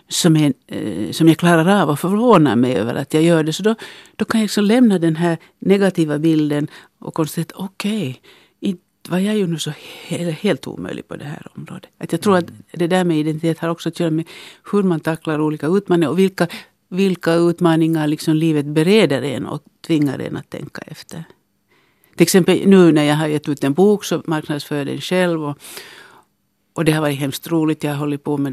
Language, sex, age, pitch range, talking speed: Finnish, female, 60-79, 150-180 Hz, 210 wpm